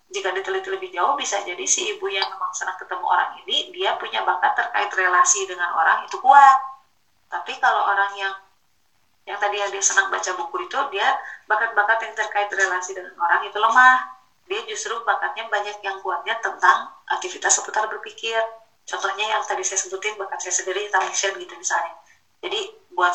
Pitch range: 190-245 Hz